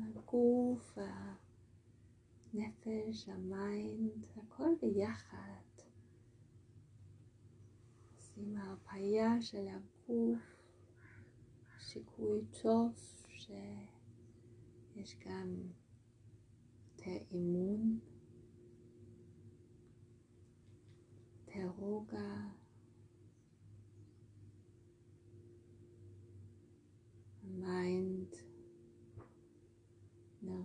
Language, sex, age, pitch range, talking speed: Hebrew, female, 30-49, 110-175 Hz, 30 wpm